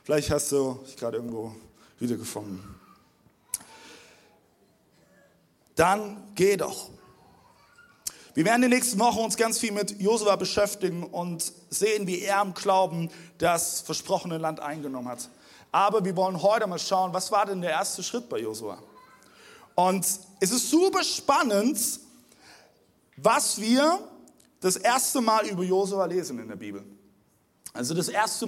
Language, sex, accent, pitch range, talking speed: German, male, German, 160-255 Hz, 145 wpm